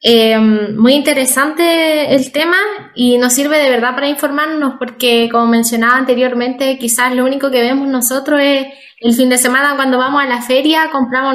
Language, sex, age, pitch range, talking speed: Romanian, female, 10-29, 235-295 Hz, 175 wpm